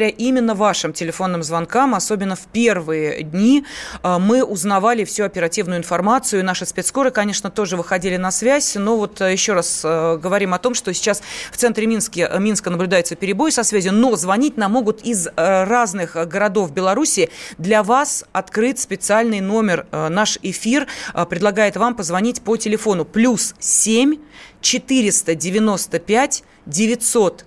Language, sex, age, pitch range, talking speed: Russian, female, 30-49, 185-235 Hz, 135 wpm